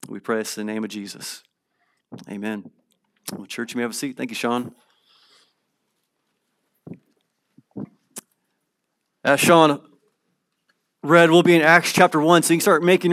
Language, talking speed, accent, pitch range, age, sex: English, 145 wpm, American, 145-220 Hz, 30-49, male